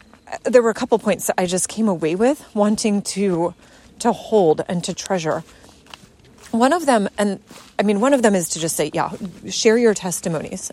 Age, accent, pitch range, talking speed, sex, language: 30-49, American, 190-250 Hz, 195 wpm, female, English